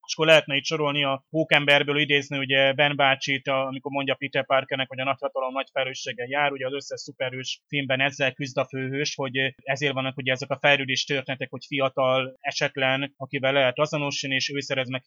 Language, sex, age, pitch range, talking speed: Hungarian, male, 30-49, 130-145 Hz, 180 wpm